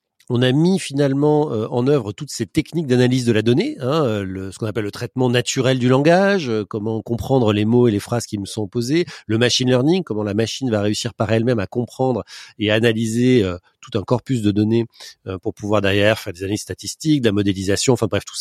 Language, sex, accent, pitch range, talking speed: French, male, French, 110-135 Hz, 215 wpm